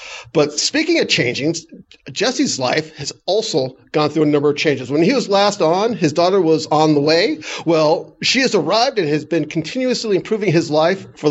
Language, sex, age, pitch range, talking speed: English, male, 50-69, 150-190 Hz, 195 wpm